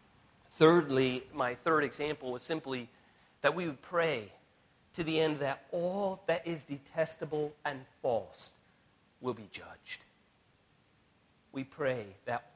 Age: 40-59